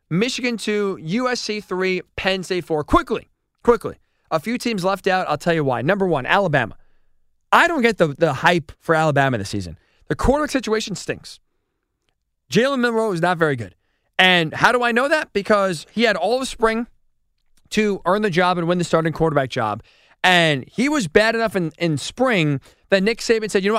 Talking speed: 195 wpm